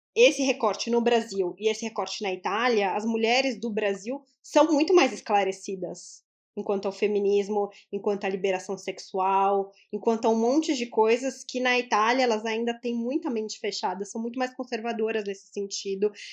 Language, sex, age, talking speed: Portuguese, female, 20-39, 165 wpm